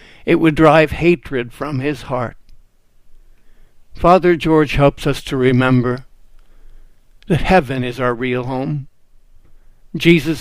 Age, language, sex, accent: 60-79, English, male, American